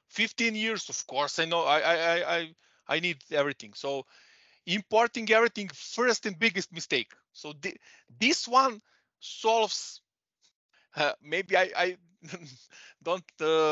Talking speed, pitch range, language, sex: 125 wpm, 140-190 Hz, Czech, male